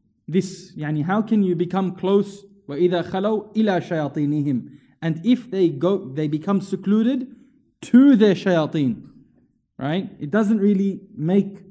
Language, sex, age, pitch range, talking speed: English, male, 20-39, 165-205 Hz, 130 wpm